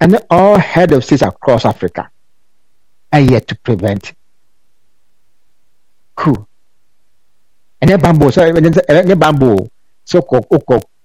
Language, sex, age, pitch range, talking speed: English, male, 60-79, 115-165 Hz, 120 wpm